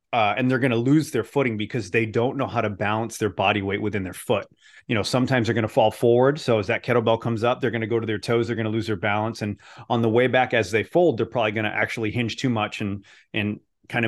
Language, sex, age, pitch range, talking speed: English, male, 30-49, 110-130 Hz, 285 wpm